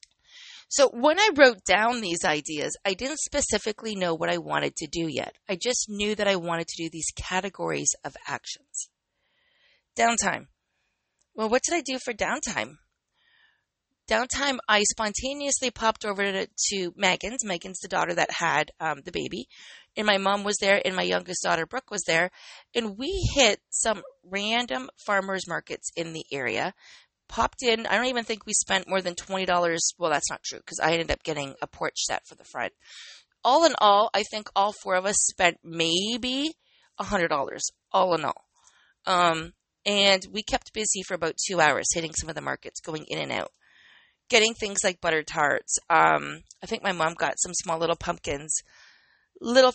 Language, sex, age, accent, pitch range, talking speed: English, female, 30-49, American, 175-245 Hz, 185 wpm